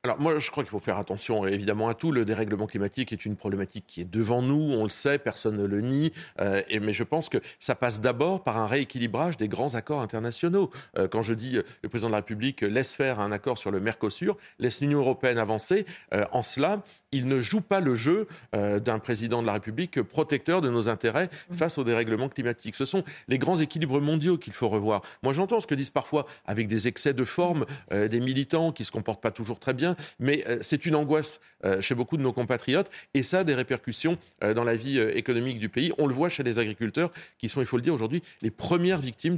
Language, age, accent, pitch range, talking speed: French, 40-59, French, 110-145 Hz, 240 wpm